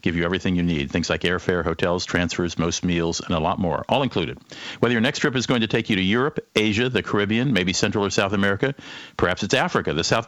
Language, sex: English, male